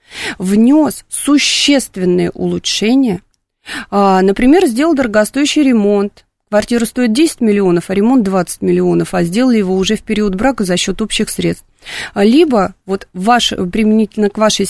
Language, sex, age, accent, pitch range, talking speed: Russian, female, 30-49, native, 190-235 Hz, 130 wpm